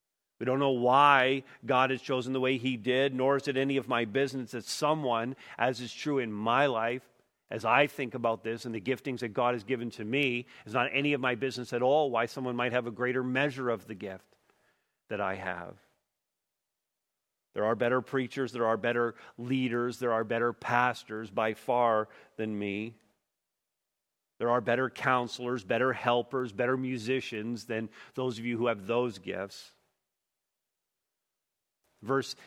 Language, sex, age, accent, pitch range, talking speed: English, male, 50-69, American, 120-150 Hz, 175 wpm